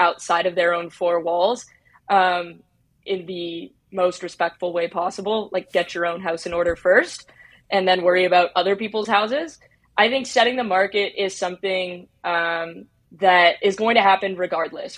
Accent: American